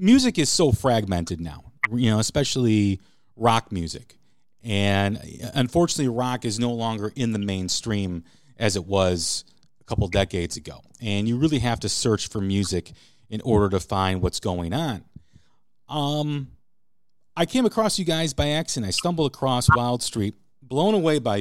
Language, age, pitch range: English, 40-59, 105-135 Hz